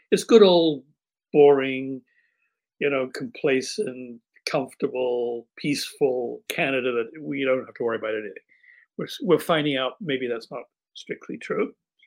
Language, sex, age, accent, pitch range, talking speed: English, male, 60-79, American, 135-215 Hz, 135 wpm